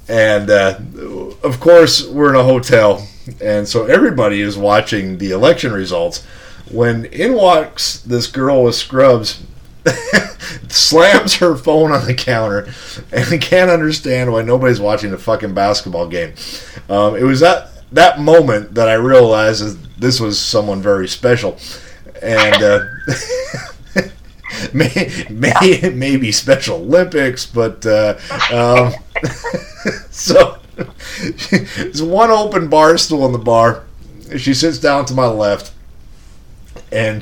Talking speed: 130 wpm